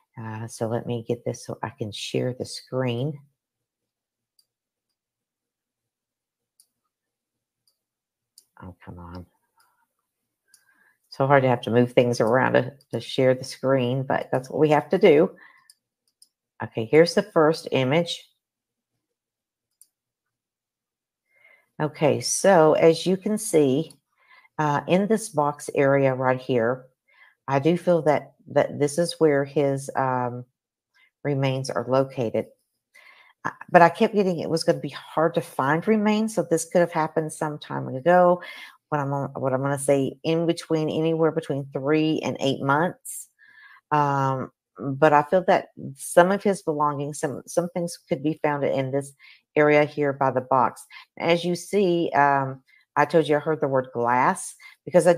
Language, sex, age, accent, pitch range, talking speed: English, female, 50-69, American, 130-170 Hz, 150 wpm